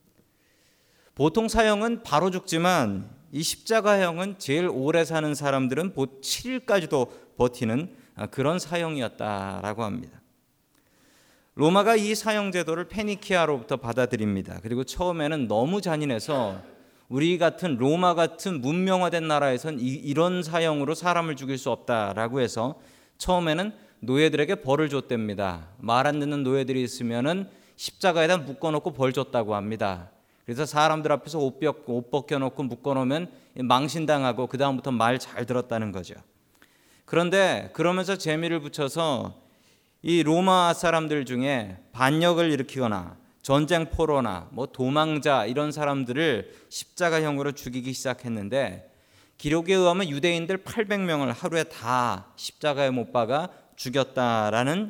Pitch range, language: 125-170 Hz, Korean